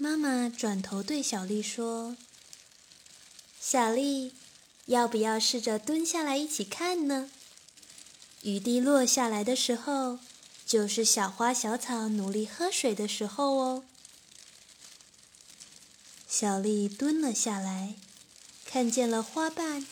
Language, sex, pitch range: Chinese, female, 210-260 Hz